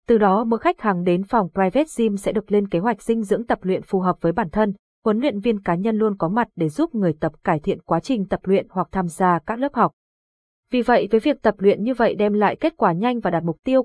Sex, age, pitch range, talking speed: female, 20-39, 180-230 Hz, 275 wpm